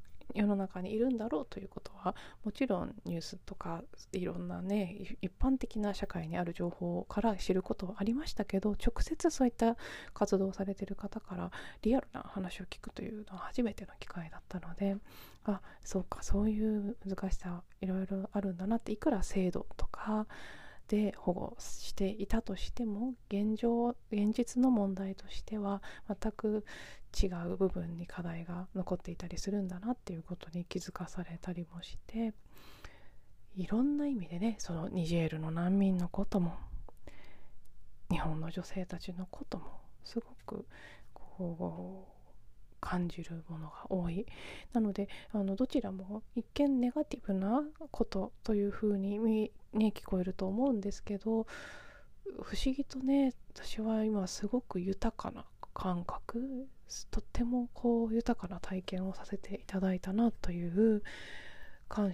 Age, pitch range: 20-39, 180-225 Hz